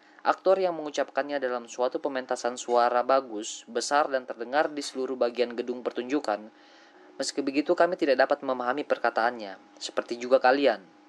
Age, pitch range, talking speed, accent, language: 20-39, 120-150 Hz, 140 wpm, native, Indonesian